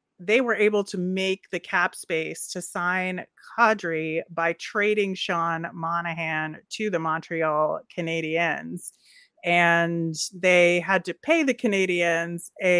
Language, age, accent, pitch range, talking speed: English, 30-49, American, 165-205 Hz, 125 wpm